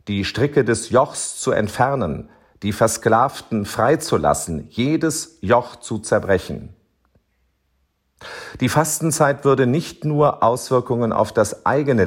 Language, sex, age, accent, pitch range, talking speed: German, male, 50-69, German, 100-145 Hz, 110 wpm